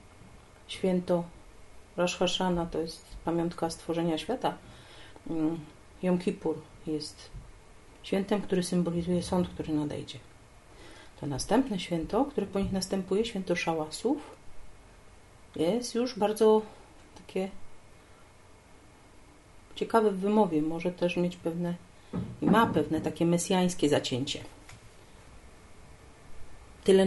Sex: female